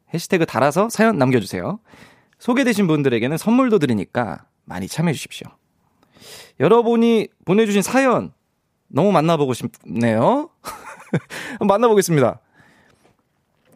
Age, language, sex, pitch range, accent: 20-39, Korean, male, 140-215 Hz, native